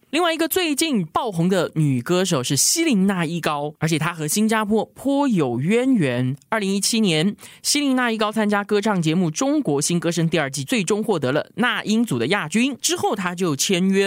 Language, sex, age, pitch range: Chinese, male, 20-39, 150-225 Hz